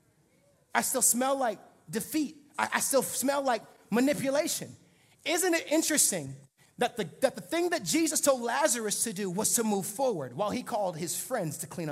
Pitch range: 215-315 Hz